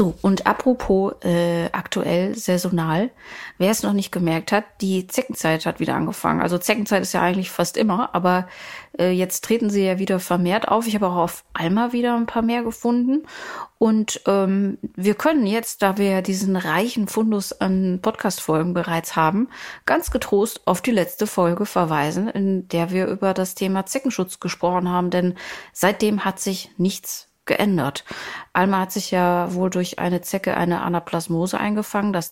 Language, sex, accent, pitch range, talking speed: German, female, German, 180-210 Hz, 170 wpm